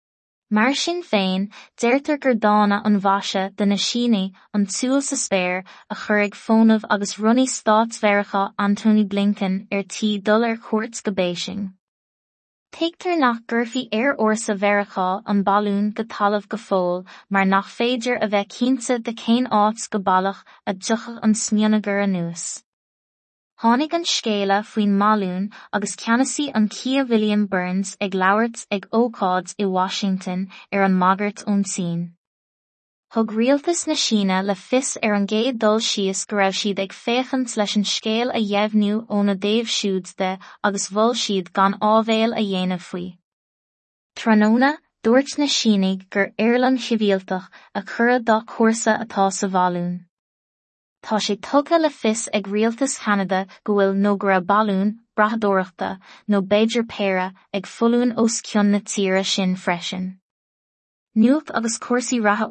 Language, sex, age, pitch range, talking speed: English, female, 20-39, 195-230 Hz, 120 wpm